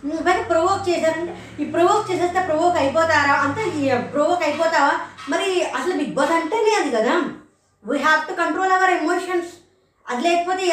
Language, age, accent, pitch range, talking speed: Telugu, 20-39, native, 275-355 Hz, 140 wpm